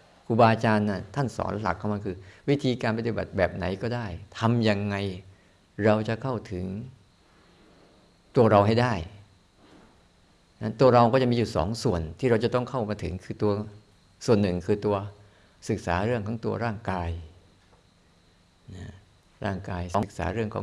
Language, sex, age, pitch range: Thai, male, 50-69, 95-120 Hz